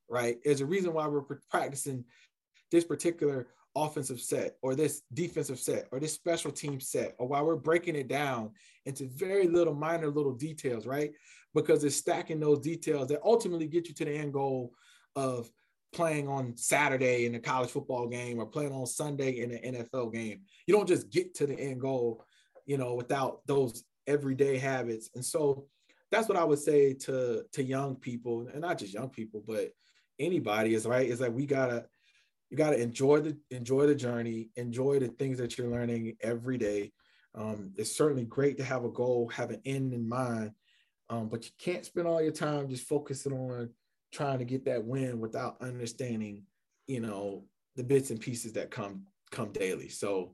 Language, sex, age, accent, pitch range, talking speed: English, male, 20-39, American, 120-150 Hz, 190 wpm